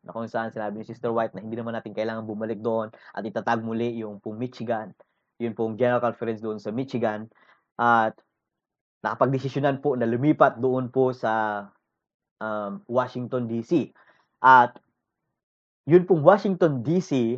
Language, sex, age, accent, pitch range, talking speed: English, male, 20-39, Filipino, 110-135 Hz, 150 wpm